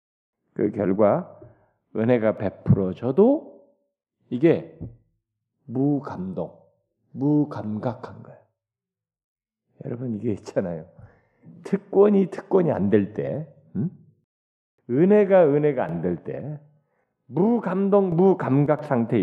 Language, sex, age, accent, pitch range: Korean, male, 40-59, native, 110-155 Hz